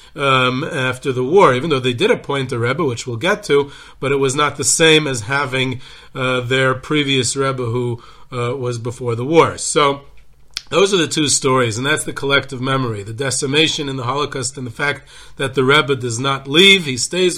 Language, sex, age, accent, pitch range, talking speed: English, male, 40-59, American, 130-155 Hz, 205 wpm